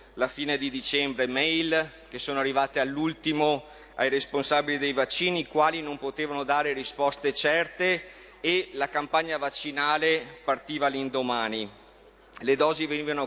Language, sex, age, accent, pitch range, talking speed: Italian, male, 30-49, native, 140-160 Hz, 130 wpm